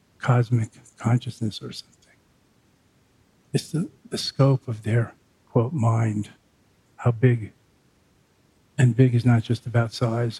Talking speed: 120 wpm